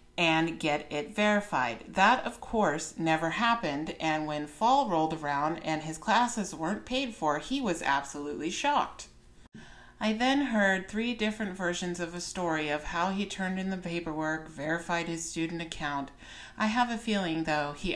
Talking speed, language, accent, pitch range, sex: 165 wpm, English, American, 155-210 Hz, female